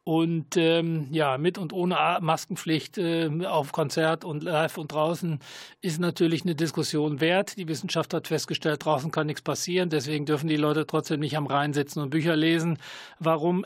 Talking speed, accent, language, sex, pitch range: 170 wpm, German, German, male, 145-170 Hz